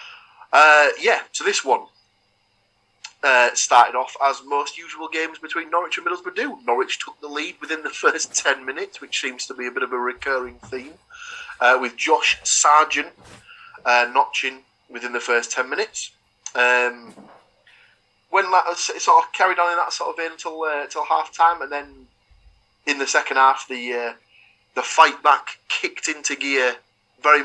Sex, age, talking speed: male, 30-49, 175 wpm